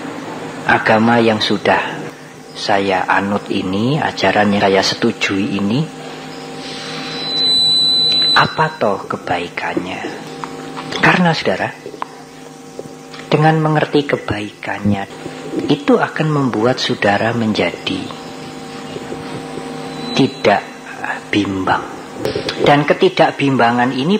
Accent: Indonesian